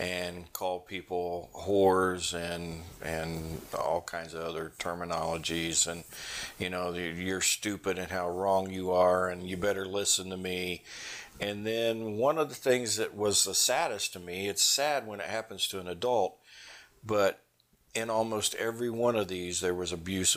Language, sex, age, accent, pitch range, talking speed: English, male, 50-69, American, 90-105 Hz, 170 wpm